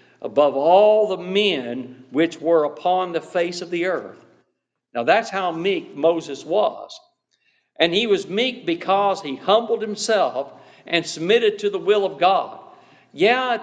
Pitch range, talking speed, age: 175-245 Hz, 155 wpm, 60-79